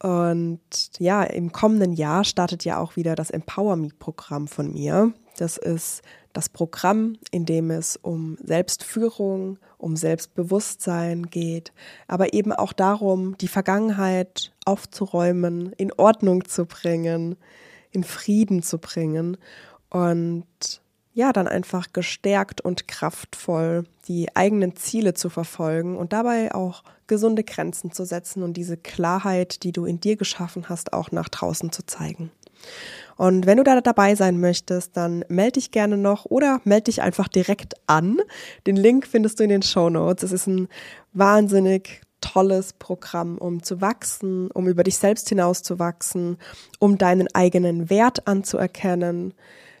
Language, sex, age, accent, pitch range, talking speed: German, female, 20-39, German, 175-200 Hz, 145 wpm